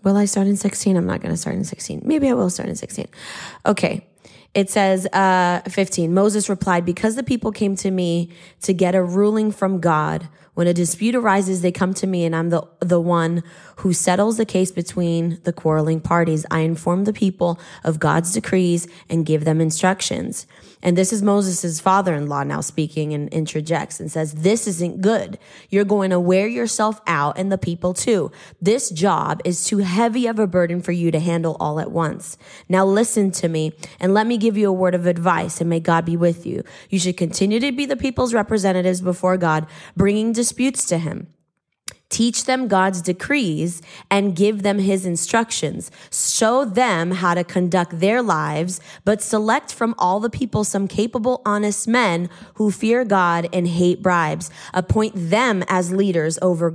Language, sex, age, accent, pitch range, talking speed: English, female, 20-39, American, 170-210 Hz, 190 wpm